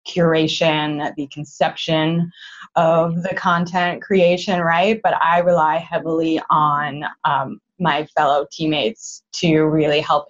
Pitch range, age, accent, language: 155-185 Hz, 20-39, American, English